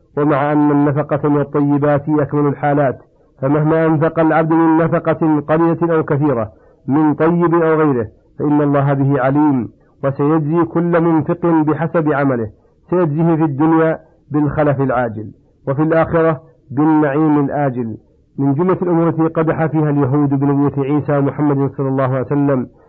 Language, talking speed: Arabic, 135 wpm